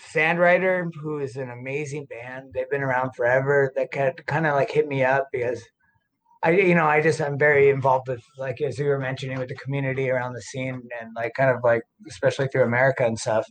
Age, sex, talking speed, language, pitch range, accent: 20-39, male, 215 wpm, English, 130-150 Hz, American